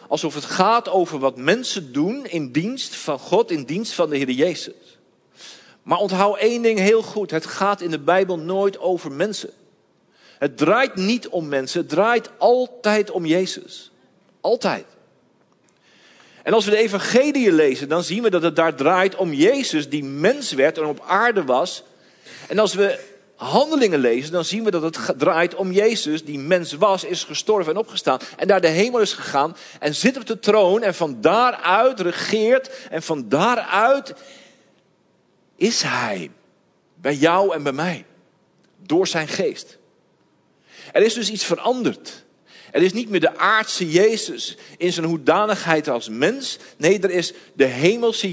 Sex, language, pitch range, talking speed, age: male, Dutch, 160-215 Hz, 165 wpm, 50-69